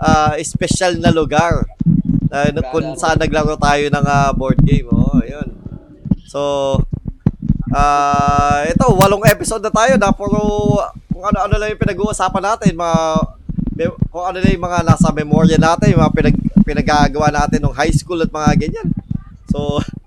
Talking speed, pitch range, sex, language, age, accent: 145 wpm, 135-175 Hz, male, Filipino, 20-39, native